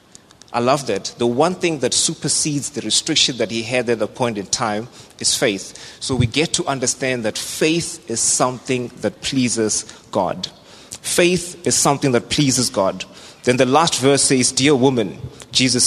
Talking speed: 175 wpm